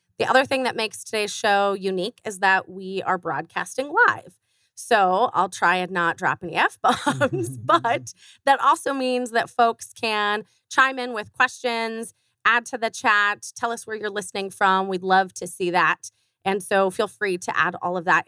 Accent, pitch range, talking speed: American, 180-230 Hz, 185 wpm